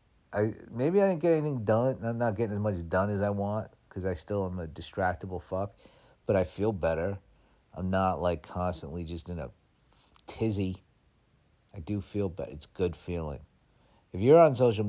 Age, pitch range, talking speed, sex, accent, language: 50-69, 90-115 Hz, 185 wpm, male, American, English